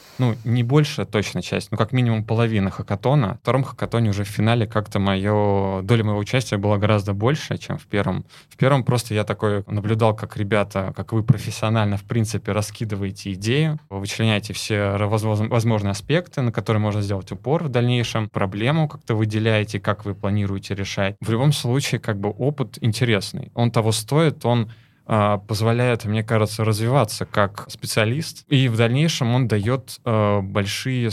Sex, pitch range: male, 105-120 Hz